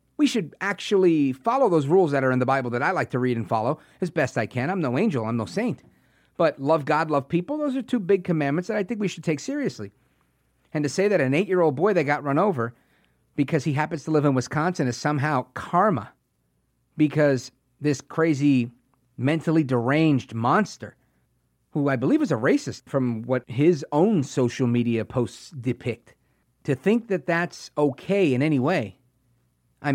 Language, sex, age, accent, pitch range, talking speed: English, male, 40-59, American, 125-170 Hz, 190 wpm